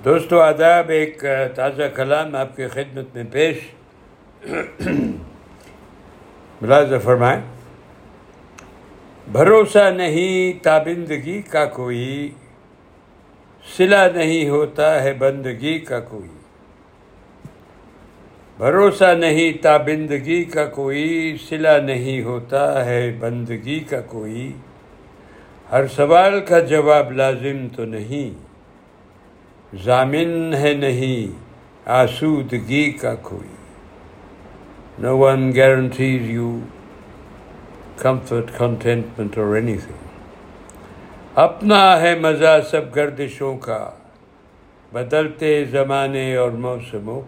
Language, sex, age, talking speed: Urdu, male, 60-79, 85 wpm